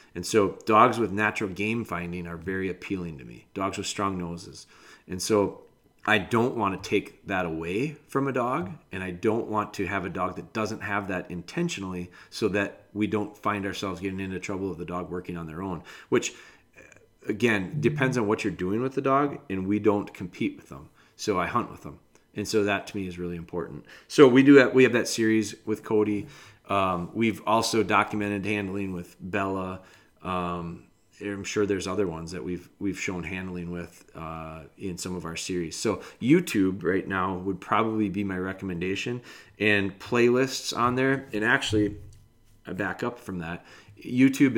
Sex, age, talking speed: male, 30-49, 190 wpm